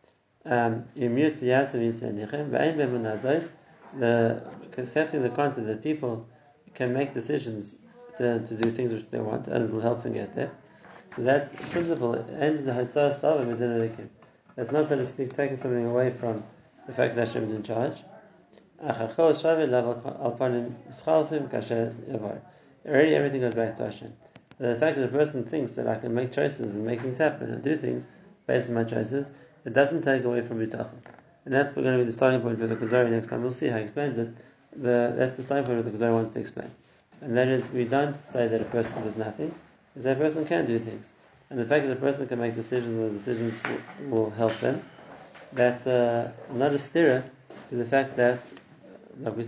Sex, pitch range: male, 115-140 Hz